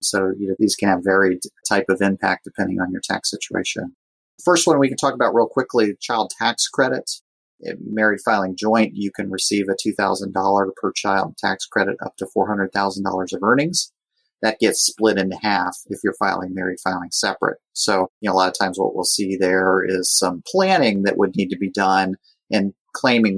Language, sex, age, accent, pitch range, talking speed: English, male, 30-49, American, 95-110 Hz, 195 wpm